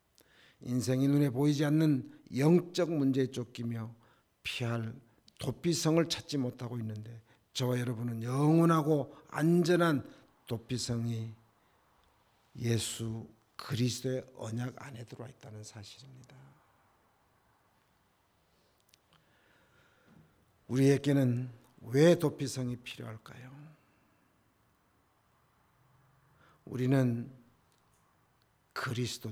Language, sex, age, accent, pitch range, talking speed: English, male, 50-69, Korean, 115-140 Hz, 60 wpm